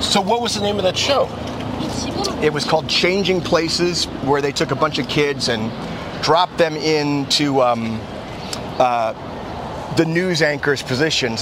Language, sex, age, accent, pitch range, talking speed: English, male, 30-49, American, 130-160 Hz, 160 wpm